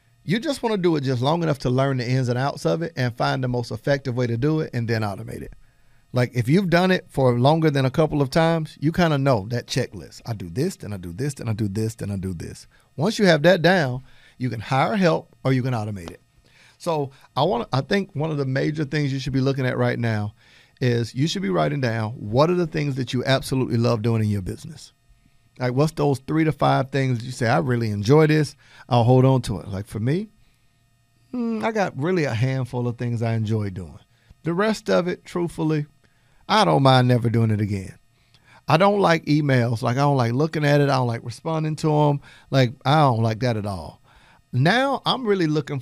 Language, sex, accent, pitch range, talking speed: English, male, American, 115-150 Hz, 240 wpm